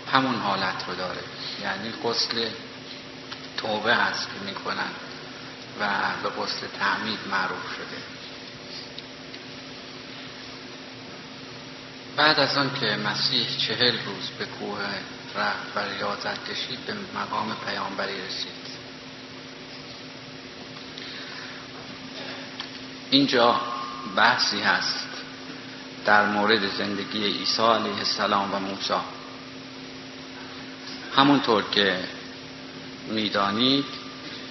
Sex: male